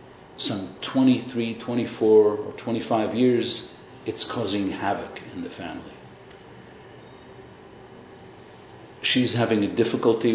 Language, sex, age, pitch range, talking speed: English, male, 50-69, 105-130 Hz, 95 wpm